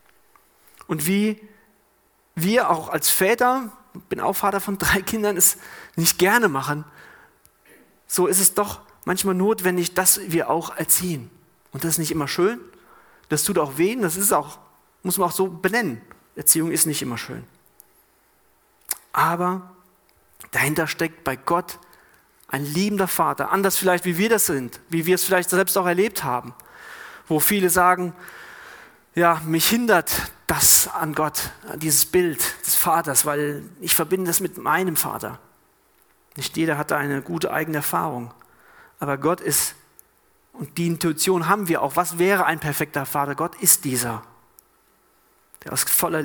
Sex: male